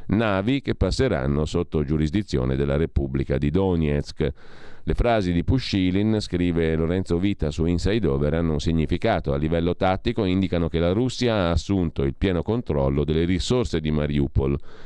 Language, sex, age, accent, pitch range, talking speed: Italian, male, 40-59, native, 80-100 Hz, 155 wpm